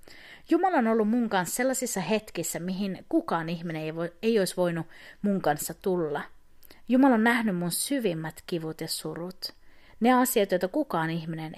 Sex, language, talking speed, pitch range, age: female, Finnish, 160 wpm, 165-225 Hz, 30-49